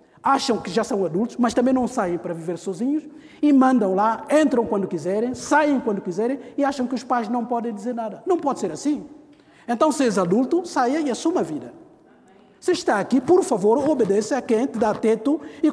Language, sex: Portuguese, male